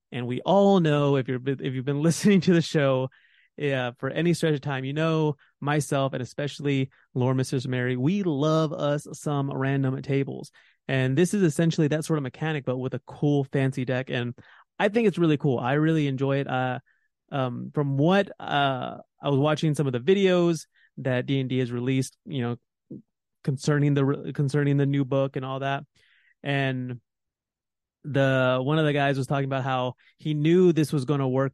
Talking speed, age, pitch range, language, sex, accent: 190 wpm, 30-49, 130-155 Hz, English, male, American